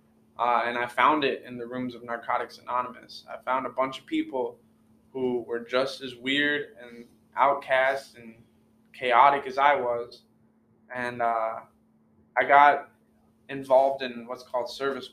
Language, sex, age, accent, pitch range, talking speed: English, male, 20-39, American, 120-135 Hz, 150 wpm